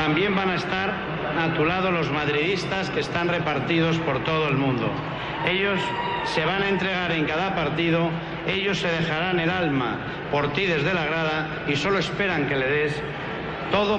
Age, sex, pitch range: 60-79, male, 150-180 Hz